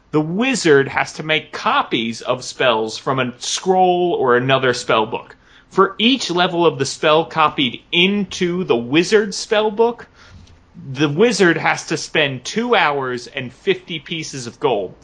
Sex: male